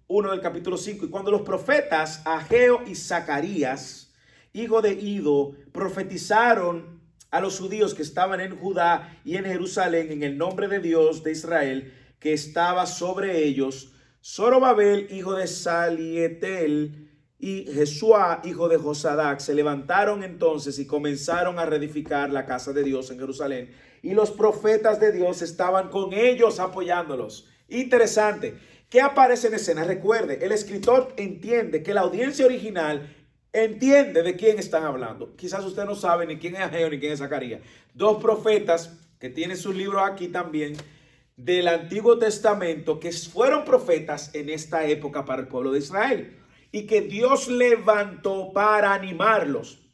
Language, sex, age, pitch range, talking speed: English, male, 40-59, 155-210 Hz, 150 wpm